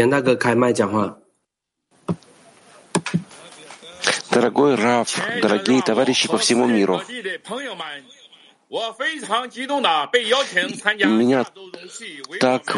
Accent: native